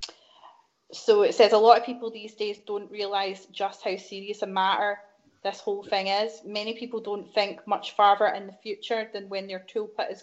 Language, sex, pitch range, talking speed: English, female, 195-225 Hz, 200 wpm